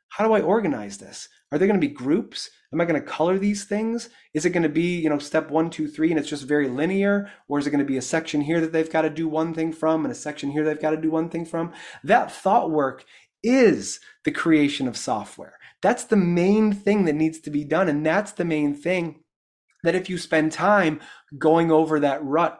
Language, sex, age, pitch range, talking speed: English, male, 30-49, 150-190 Hz, 230 wpm